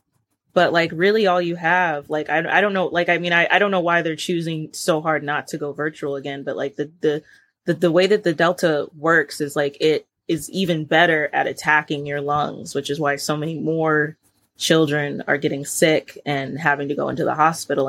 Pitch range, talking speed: 145-170 Hz, 220 wpm